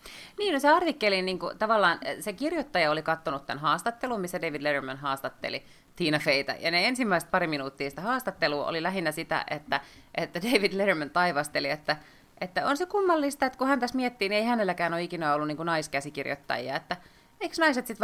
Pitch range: 150-200 Hz